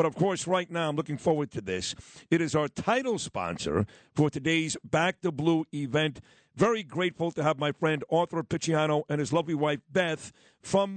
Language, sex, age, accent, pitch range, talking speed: English, male, 50-69, American, 150-175 Hz, 190 wpm